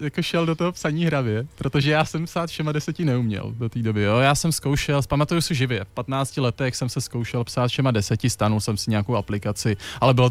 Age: 20-39